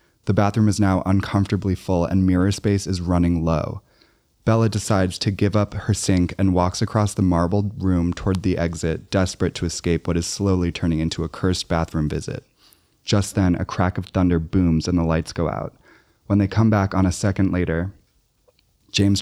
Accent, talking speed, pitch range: American, 190 wpm, 90-110 Hz